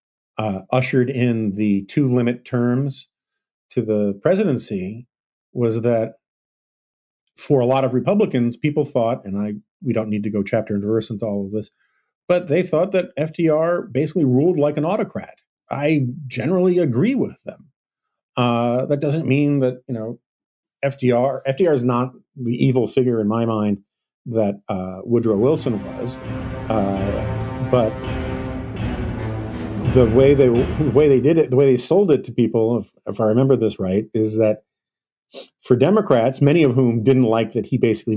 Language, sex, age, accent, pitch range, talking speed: English, male, 50-69, American, 105-130 Hz, 160 wpm